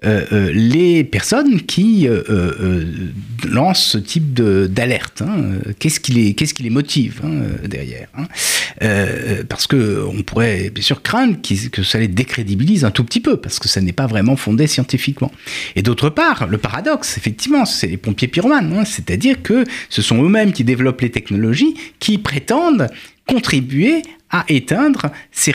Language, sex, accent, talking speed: French, male, French, 170 wpm